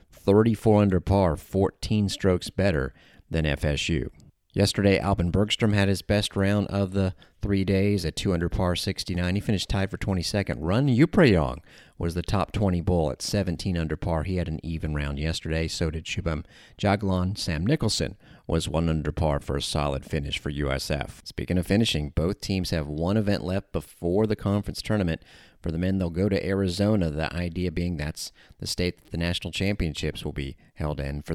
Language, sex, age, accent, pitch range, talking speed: English, male, 40-59, American, 75-100 Hz, 185 wpm